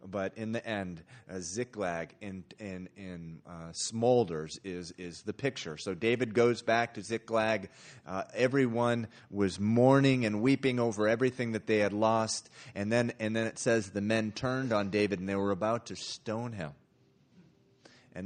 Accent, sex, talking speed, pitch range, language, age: American, male, 170 wpm, 90-115 Hz, English, 30-49